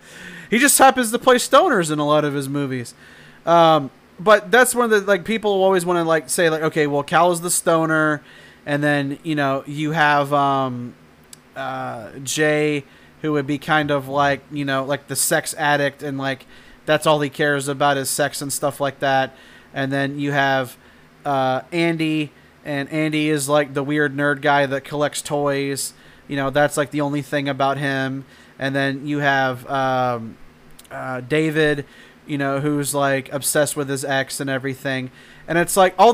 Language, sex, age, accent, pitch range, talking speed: English, male, 20-39, American, 140-170 Hz, 190 wpm